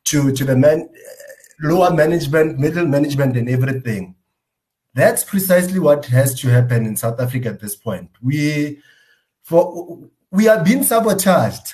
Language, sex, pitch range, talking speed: English, male, 130-170 Hz, 145 wpm